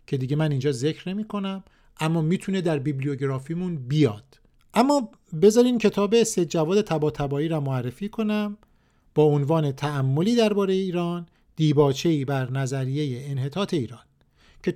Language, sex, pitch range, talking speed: Persian, male, 145-210 Hz, 130 wpm